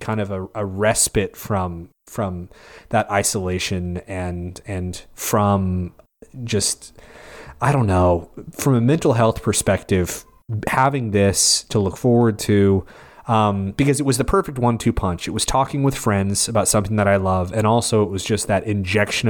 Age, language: 30-49, English